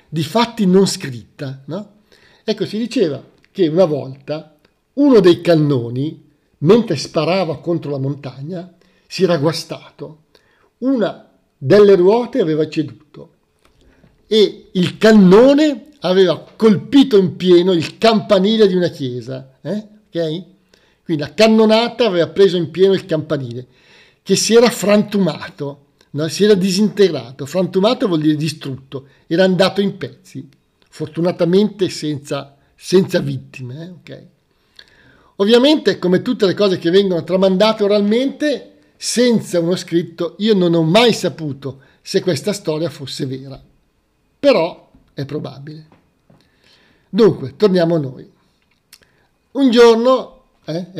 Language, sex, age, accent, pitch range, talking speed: Italian, male, 50-69, native, 150-205 Hz, 120 wpm